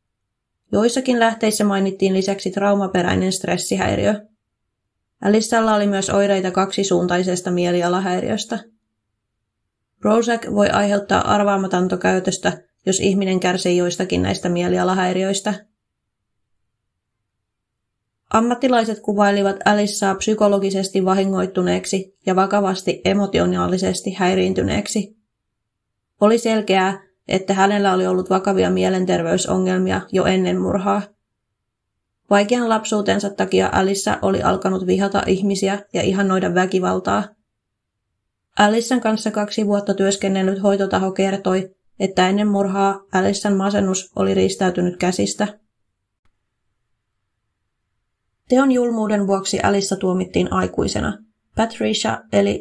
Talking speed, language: 85 wpm, Finnish